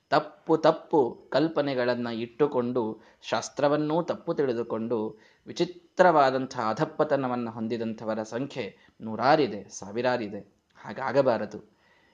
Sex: male